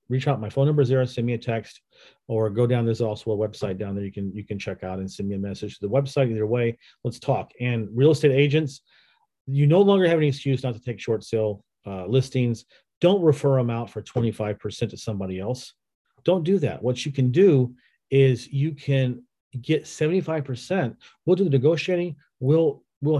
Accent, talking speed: American, 210 wpm